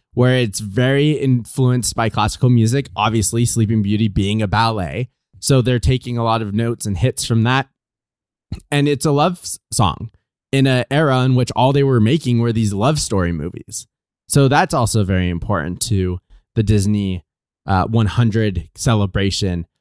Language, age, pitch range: English, 20-39, 105-125 Hz